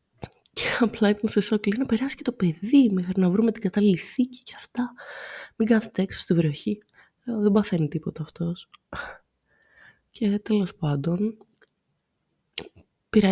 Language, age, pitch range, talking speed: Greek, 20-39, 140-200 Hz, 140 wpm